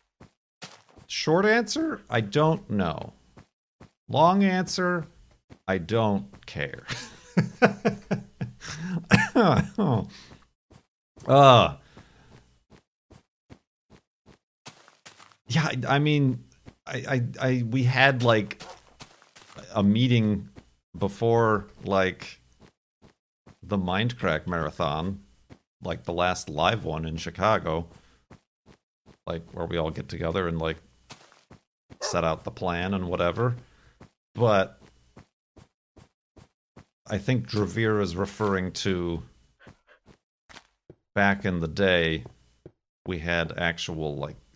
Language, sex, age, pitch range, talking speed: English, male, 50-69, 85-115 Hz, 90 wpm